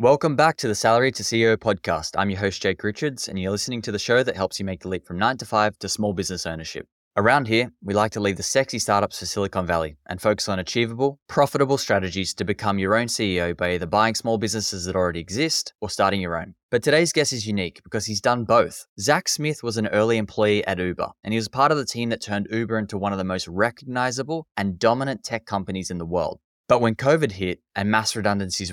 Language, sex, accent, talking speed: English, male, Australian, 240 wpm